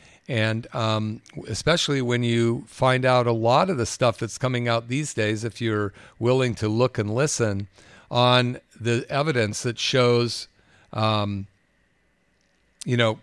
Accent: American